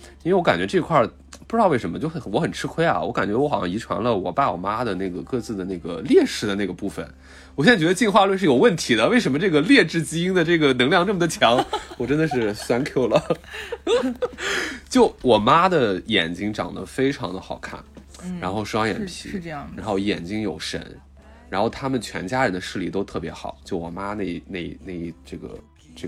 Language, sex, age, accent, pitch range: Chinese, male, 20-39, native, 80-115 Hz